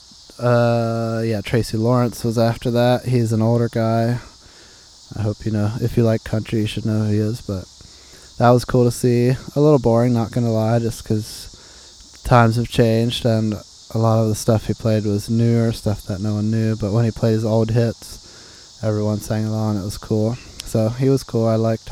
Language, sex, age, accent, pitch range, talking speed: English, male, 20-39, American, 105-120 Hz, 210 wpm